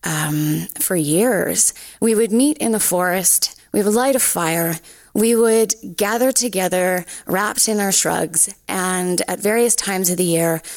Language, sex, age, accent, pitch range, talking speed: English, female, 20-39, American, 175-230 Hz, 160 wpm